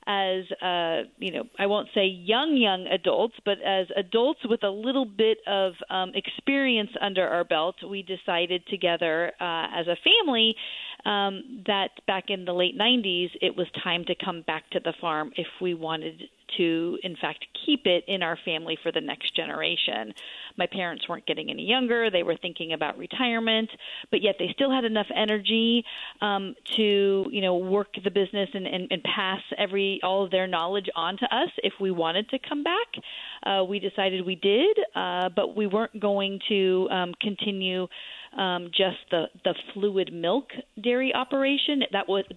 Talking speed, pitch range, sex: 180 wpm, 175-215 Hz, female